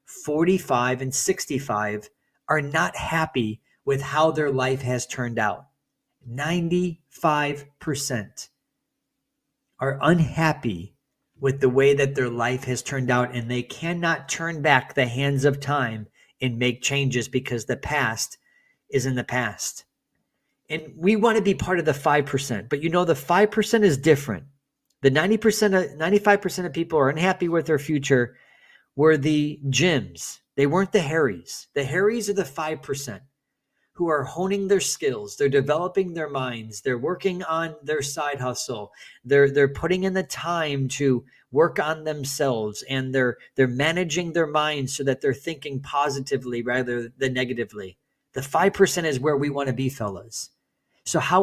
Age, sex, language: 40-59, male, English